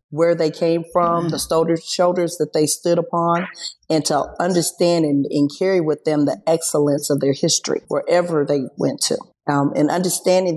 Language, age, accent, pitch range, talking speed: English, 40-59, American, 145-170 Hz, 170 wpm